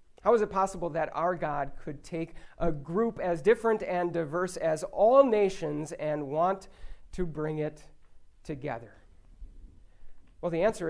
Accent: American